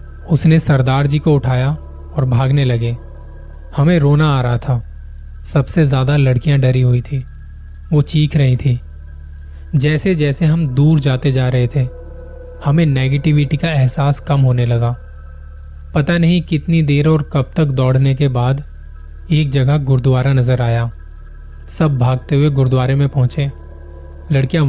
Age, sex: 20-39, male